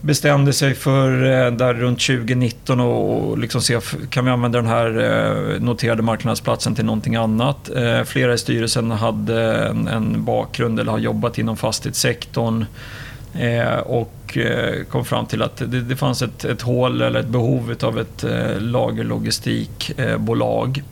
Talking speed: 130 wpm